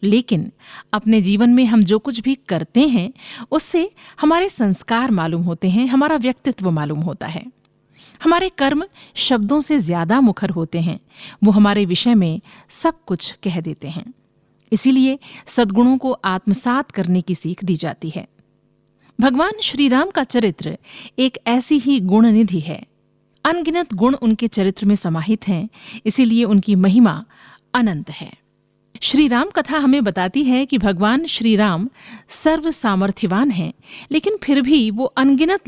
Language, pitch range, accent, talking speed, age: Hindi, 195-270 Hz, native, 150 wpm, 50-69